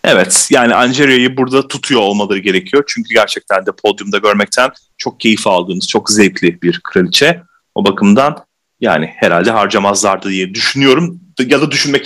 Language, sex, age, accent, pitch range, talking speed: Turkish, male, 30-49, native, 125-195 Hz, 145 wpm